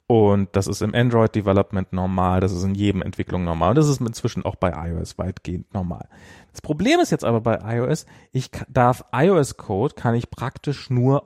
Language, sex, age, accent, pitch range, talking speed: German, male, 40-59, German, 105-130 Hz, 185 wpm